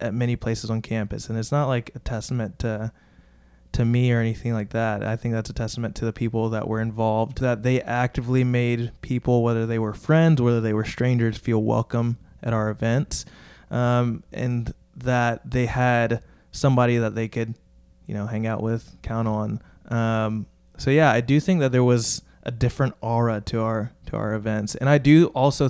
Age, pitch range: 20-39, 110-125 Hz